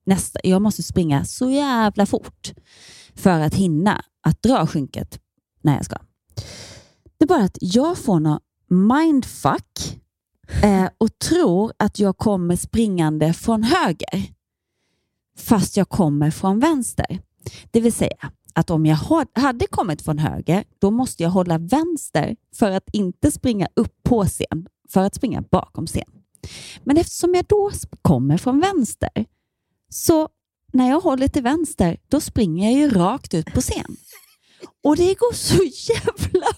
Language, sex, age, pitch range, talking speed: Swedish, female, 30-49, 185-285 Hz, 150 wpm